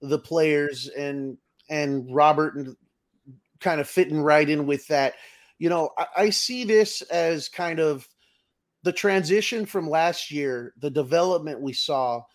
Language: English